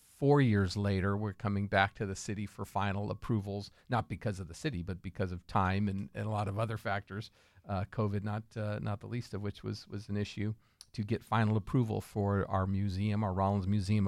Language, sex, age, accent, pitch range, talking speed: English, male, 50-69, American, 100-110 Hz, 215 wpm